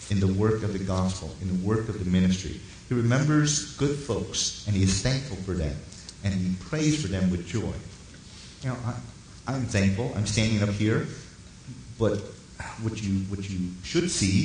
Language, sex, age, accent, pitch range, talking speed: English, male, 40-59, American, 95-120 Hz, 180 wpm